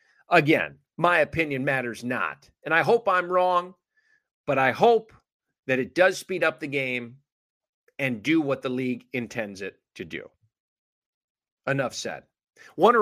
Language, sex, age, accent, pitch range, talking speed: English, male, 40-59, American, 135-205 Hz, 150 wpm